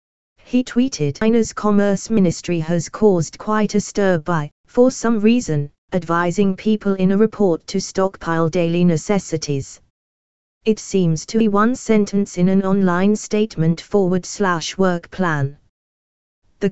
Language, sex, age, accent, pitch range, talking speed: English, female, 20-39, British, 165-205 Hz, 135 wpm